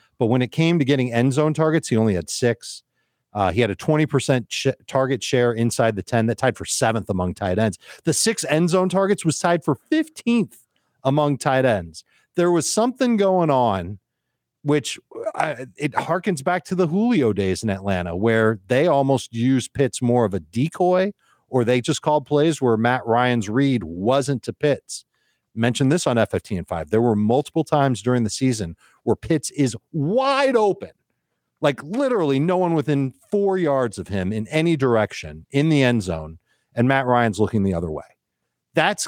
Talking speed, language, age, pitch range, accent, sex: 185 wpm, English, 40-59, 110-155 Hz, American, male